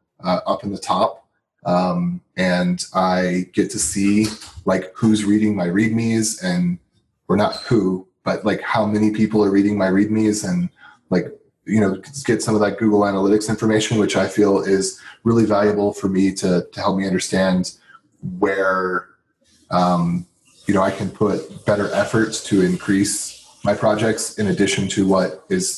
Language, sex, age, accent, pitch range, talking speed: English, male, 30-49, American, 95-110 Hz, 165 wpm